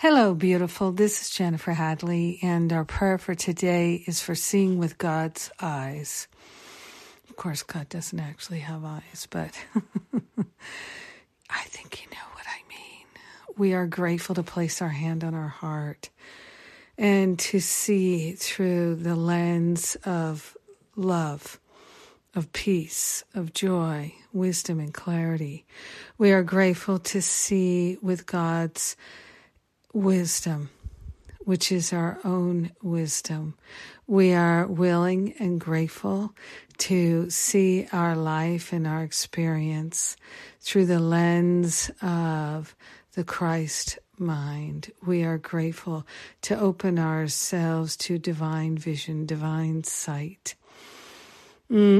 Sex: female